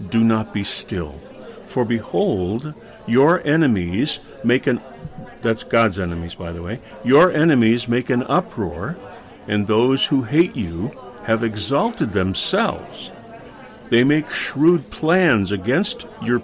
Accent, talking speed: American, 130 wpm